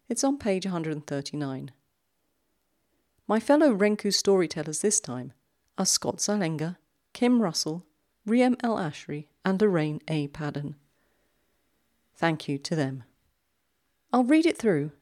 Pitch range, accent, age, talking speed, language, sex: 140-200 Hz, British, 40-59, 120 wpm, English, female